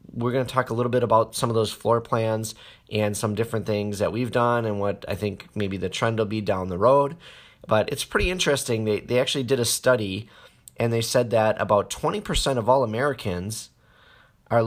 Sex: male